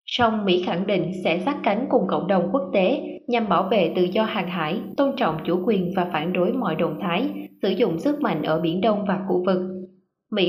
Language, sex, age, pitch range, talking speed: Vietnamese, female, 20-39, 185-225 Hz, 230 wpm